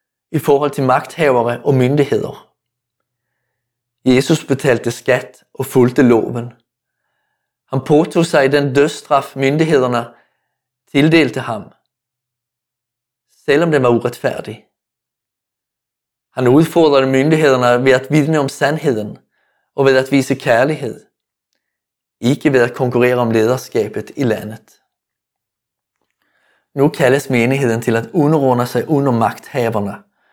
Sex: male